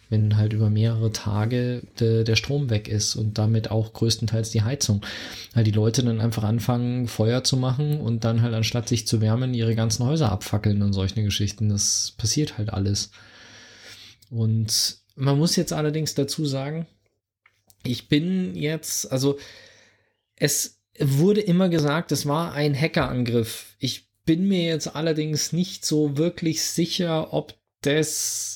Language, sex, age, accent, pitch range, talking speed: German, male, 20-39, German, 110-150 Hz, 150 wpm